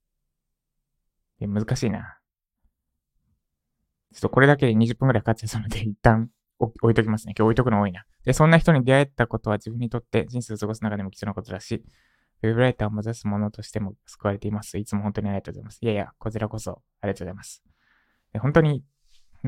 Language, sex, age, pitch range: Japanese, male, 20-39, 100-120 Hz